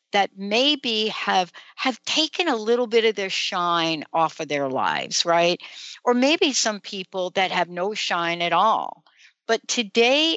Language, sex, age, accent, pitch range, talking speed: English, female, 60-79, American, 175-230 Hz, 160 wpm